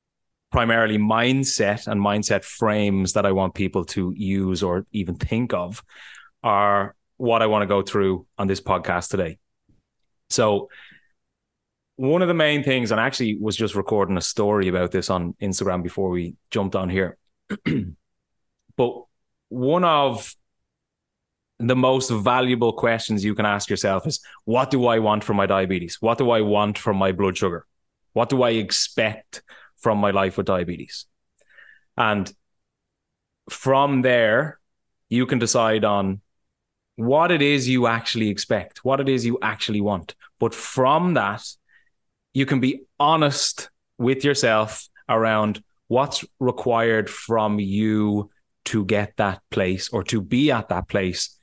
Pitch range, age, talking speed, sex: 95-120 Hz, 20-39, 150 wpm, male